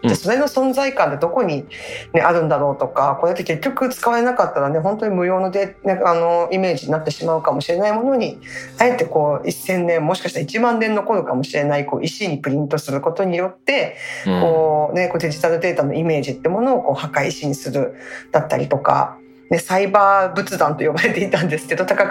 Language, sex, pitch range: Japanese, female, 155-220 Hz